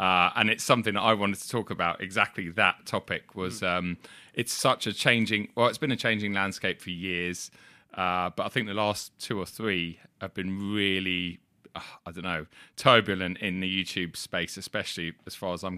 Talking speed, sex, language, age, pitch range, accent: 200 wpm, male, English, 30-49, 95-110 Hz, British